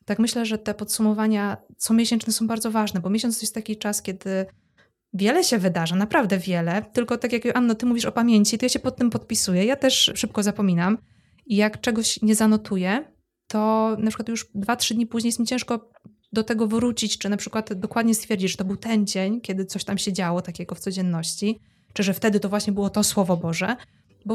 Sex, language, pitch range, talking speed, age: female, Polish, 195-225 Hz, 215 wpm, 20-39